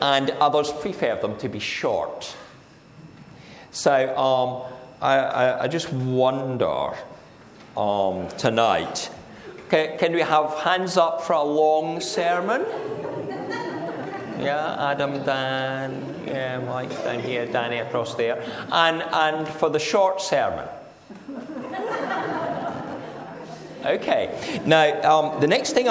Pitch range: 120-160 Hz